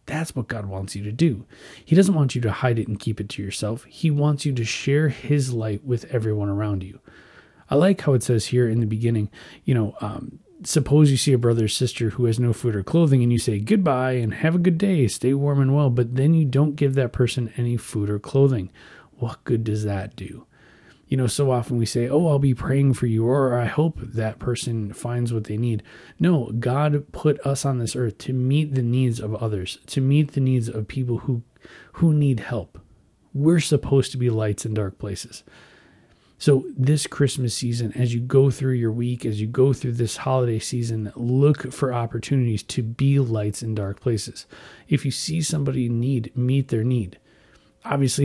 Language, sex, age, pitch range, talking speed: English, male, 30-49, 115-140 Hz, 215 wpm